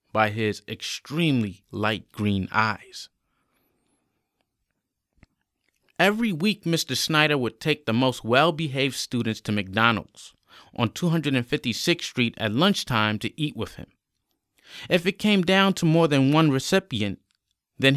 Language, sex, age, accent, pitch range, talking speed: English, male, 30-49, American, 105-145 Hz, 125 wpm